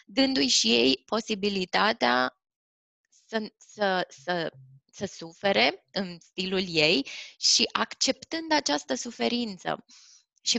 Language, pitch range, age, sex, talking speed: Romanian, 170-220 Hz, 20-39, female, 85 wpm